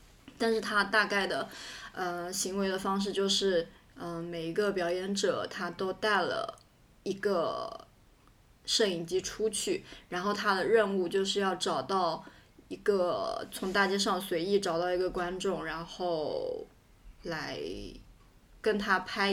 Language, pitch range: Chinese, 180-210 Hz